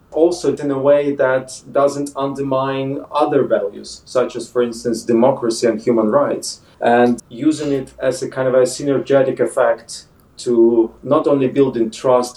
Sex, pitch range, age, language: male, 120-150 Hz, 40-59, English